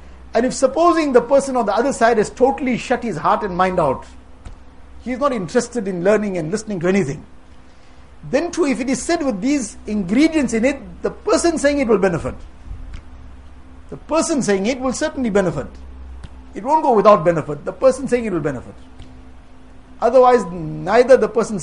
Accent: Indian